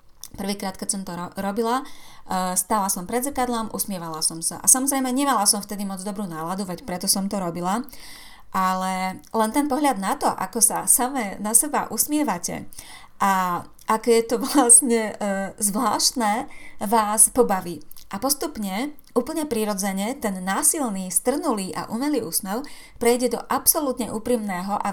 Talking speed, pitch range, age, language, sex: 145 wpm, 185-235 Hz, 30-49, Slovak, female